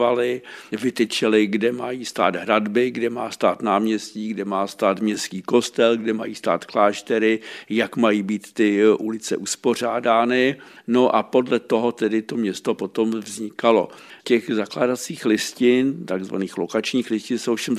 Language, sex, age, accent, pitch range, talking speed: Czech, male, 60-79, native, 105-115 Hz, 140 wpm